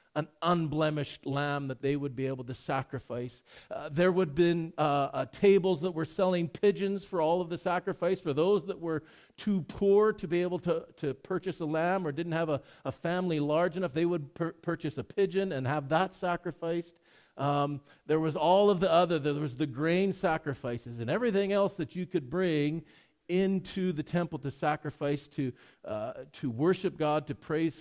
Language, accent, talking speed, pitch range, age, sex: English, American, 190 wpm, 150-190 Hz, 50-69, male